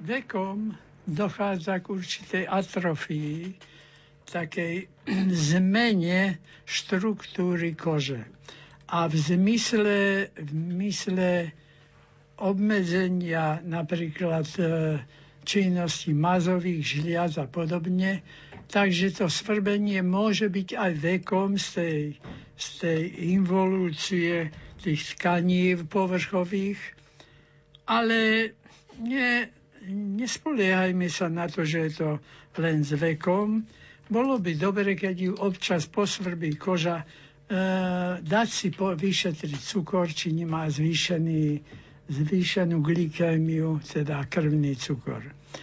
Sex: male